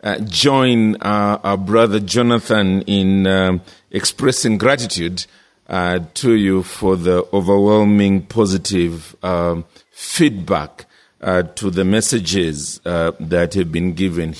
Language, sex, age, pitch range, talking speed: English, male, 50-69, 90-110 Hz, 115 wpm